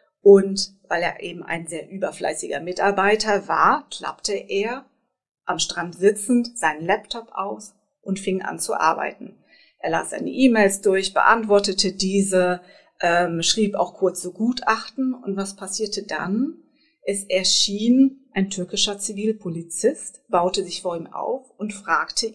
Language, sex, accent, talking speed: German, female, German, 135 wpm